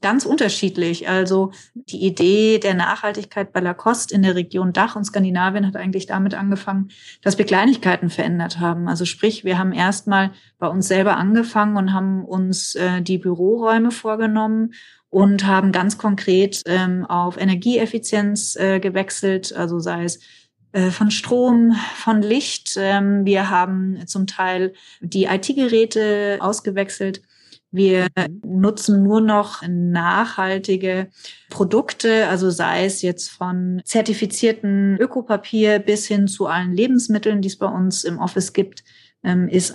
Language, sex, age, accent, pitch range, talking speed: German, female, 30-49, German, 185-210 Hz, 135 wpm